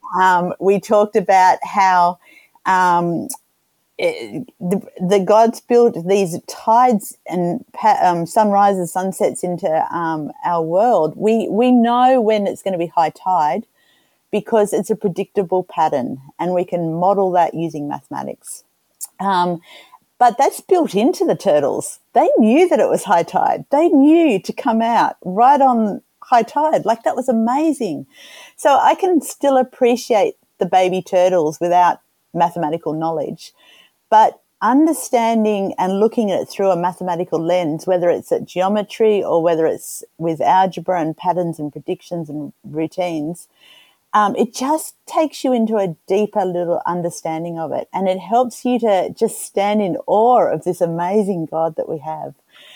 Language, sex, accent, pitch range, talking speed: English, female, Australian, 175-240 Hz, 150 wpm